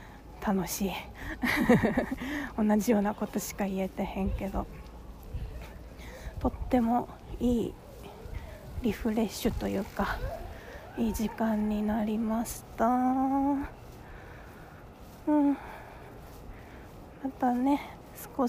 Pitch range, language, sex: 215-250 Hz, Japanese, female